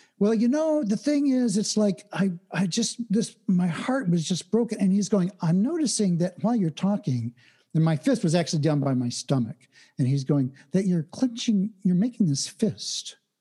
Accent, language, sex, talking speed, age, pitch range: American, English, male, 200 wpm, 60-79, 155-230 Hz